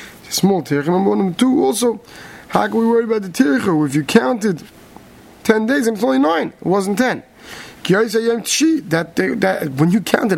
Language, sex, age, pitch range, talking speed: English, male, 20-39, 150-210 Hz, 185 wpm